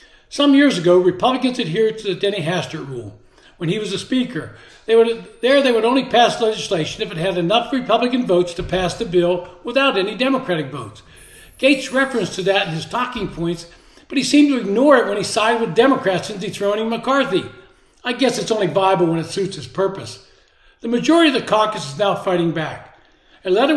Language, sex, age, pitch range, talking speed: English, male, 60-79, 180-245 Hz, 195 wpm